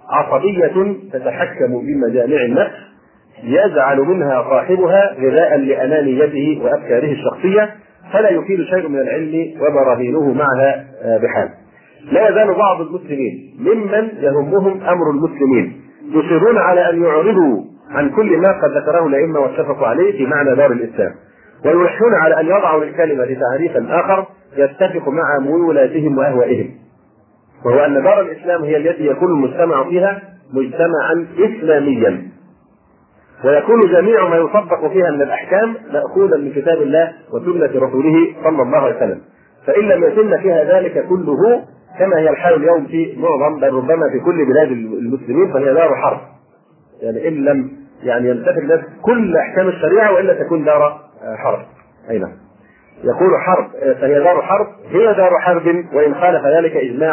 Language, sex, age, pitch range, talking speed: Arabic, male, 40-59, 150-205 Hz, 135 wpm